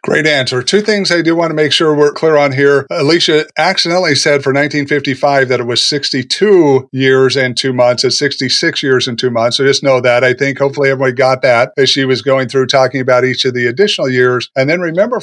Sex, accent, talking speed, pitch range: male, American, 230 wpm, 130-170 Hz